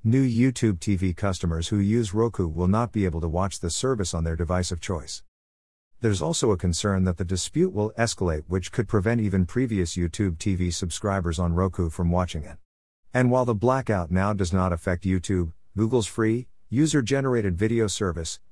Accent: American